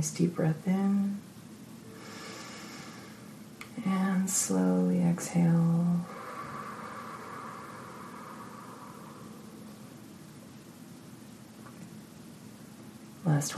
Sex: female